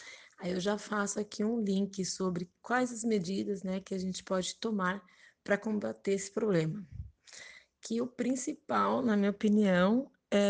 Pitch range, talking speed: 180-215 Hz, 160 wpm